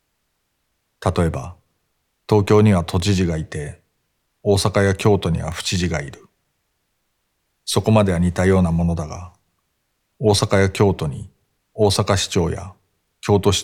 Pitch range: 85-100 Hz